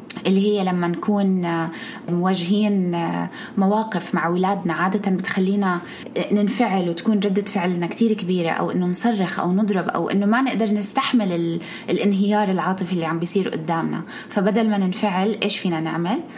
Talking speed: 140 wpm